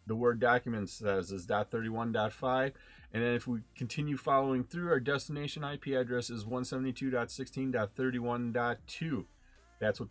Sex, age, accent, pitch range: male, 30-49, American, 115-145 Hz